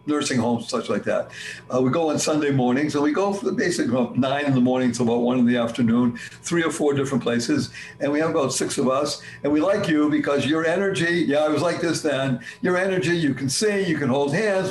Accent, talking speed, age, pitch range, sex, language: American, 255 wpm, 60-79, 125-170 Hz, male, English